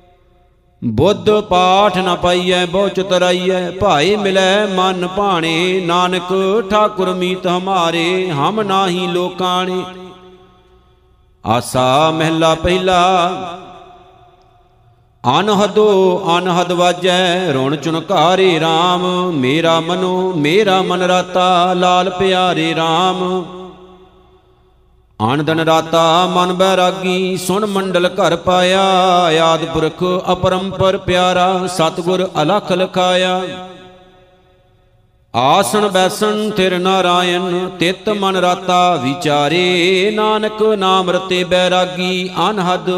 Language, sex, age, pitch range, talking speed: Punjabi, male, 50-69, 180-185 Hz, 90 wpm